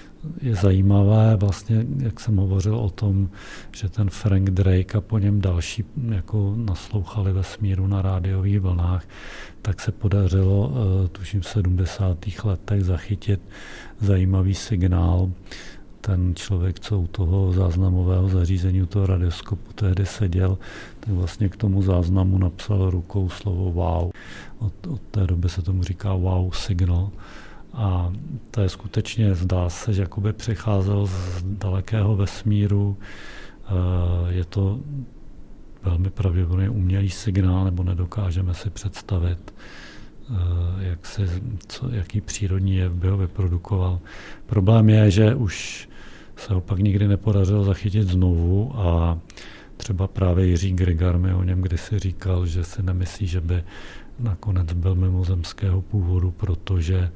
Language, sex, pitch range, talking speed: Czech, male, 90-105 Hz, 130 wpm